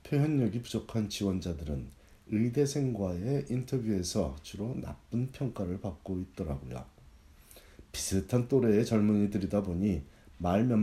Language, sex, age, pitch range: Korean, male, 40-59, 85-110 Hz